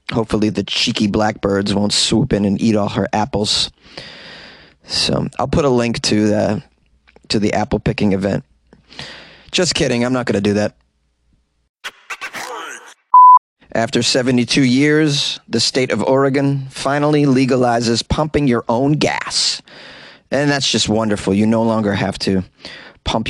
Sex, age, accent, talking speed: male, 30-49, American, 140 wpm